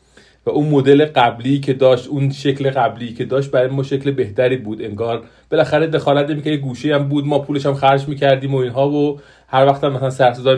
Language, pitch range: Persian, 115-140 Hz